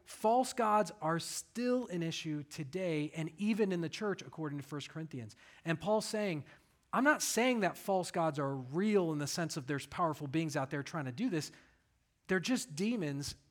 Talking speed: 190 wpm